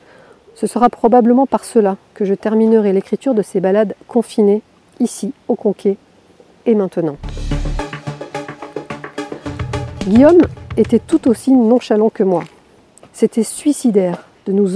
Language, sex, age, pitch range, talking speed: French, female, 40-59, 195-245 Hz, 120 wpm